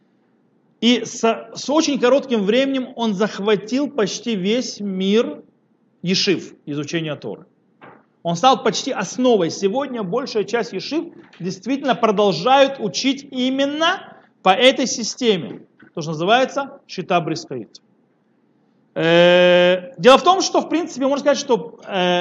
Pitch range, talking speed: 185-260 Hz, 120 wpm